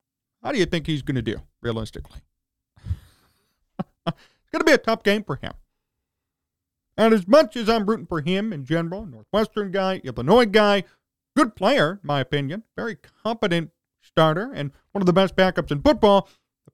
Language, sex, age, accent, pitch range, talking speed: English, male, 40-59, American, 140-215 Hz, 175 wpm